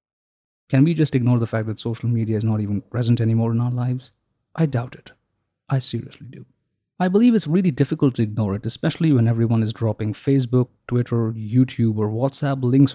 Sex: male